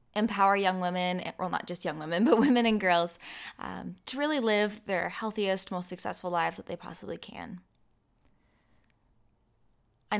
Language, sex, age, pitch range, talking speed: English, female, 10-29, 175-205 Hz, 155 wpm